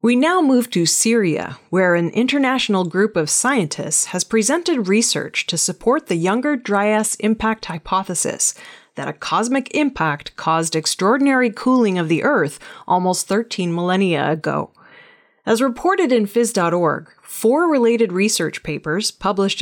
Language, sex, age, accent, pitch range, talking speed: English, female, 30-49, American, 165-235 Hz, 135 wpm